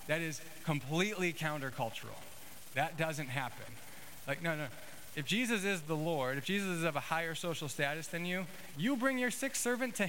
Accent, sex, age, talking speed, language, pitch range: American, male, 30-49, 185 wpm, English, 115-160 Hz